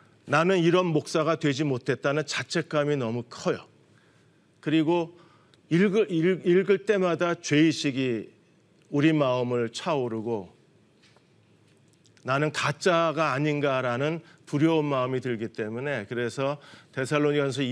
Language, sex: Korean, male